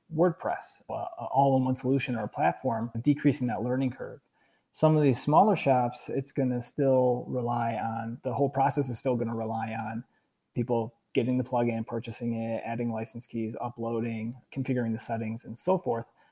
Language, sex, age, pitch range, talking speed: English, male, 30-49, 120-140 Hz, 175 wpm